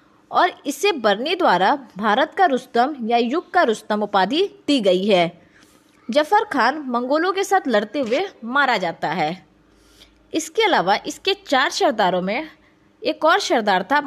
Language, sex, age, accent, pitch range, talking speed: Hindi, female, 20-39, native, 215-335 Hz, 150 wpm